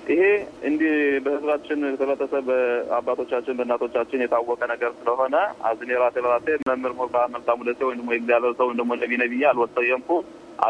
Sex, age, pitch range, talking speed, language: male, 20-39, 125-135 Hz, 190 wpm, Hebrew